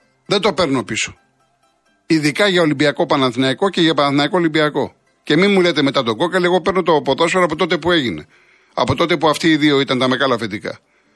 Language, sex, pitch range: Greek, male, 155-210 Hz